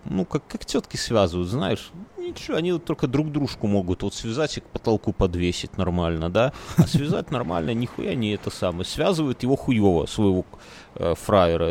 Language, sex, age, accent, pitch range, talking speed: Russian, male, 30-49, native, 95-120 Hz, 175 wpm